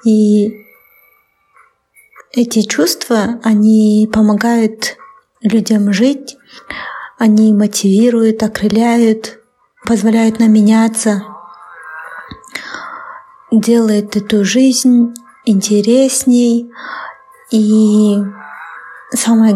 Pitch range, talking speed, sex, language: 215-235 Hz, 60 wpm, female, Russian